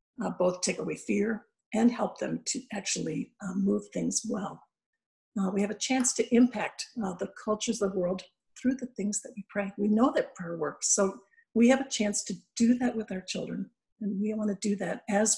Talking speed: 220 wpm